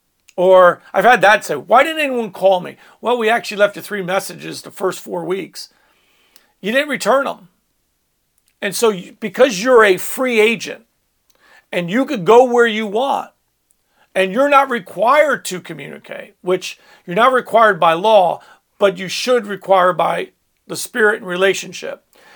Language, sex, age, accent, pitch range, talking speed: English, male, 50-69, American, 190-245 Hz, 160 wpm